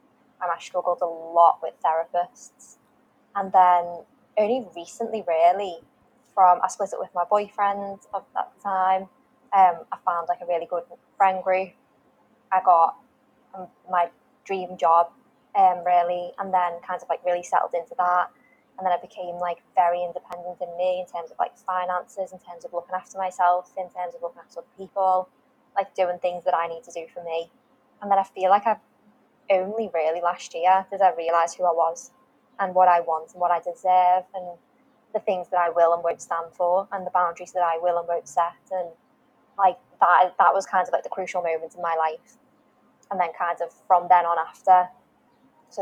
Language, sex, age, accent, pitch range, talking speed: English, female, 20-39, British, 170-200 Hz, 195 wpm